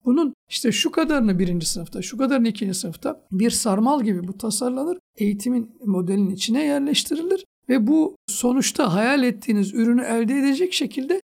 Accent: native